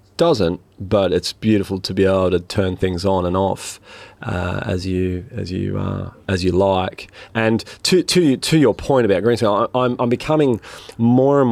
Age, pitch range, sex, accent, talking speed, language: 30-49, 100-120 Hz, male, Australian, 180 wpm, English